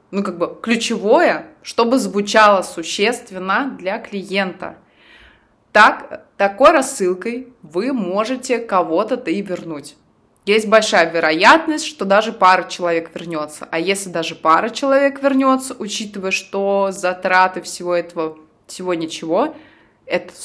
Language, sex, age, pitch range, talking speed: Russian, female, 20-39, 190-245 Hz, 115 wpm